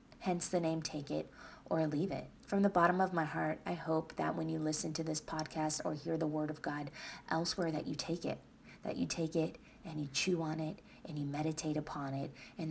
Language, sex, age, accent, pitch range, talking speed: English, female, 30-49, American, 155-185 Hz, 230 wpm